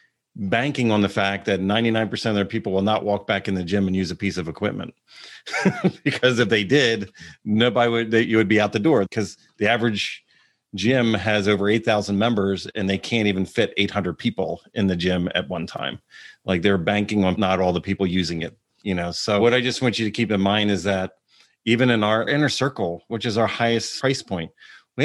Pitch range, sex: 95-115 Hz, male